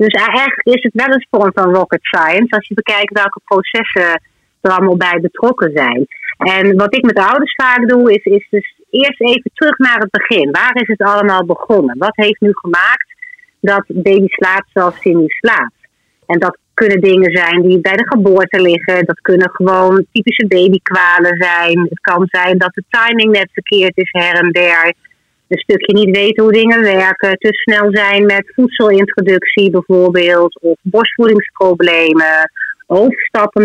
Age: 30-49